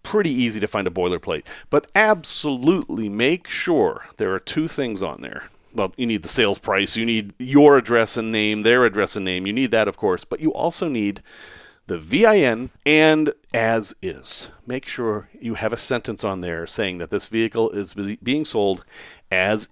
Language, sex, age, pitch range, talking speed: English, male, 40-59, 115-175 Hz, 190 wpm